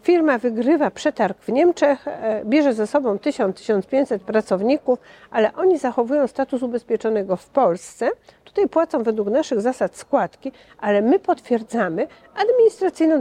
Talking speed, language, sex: 125 wpm, Polish, female